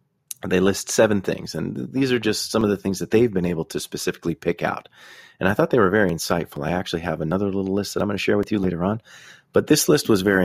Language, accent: English, American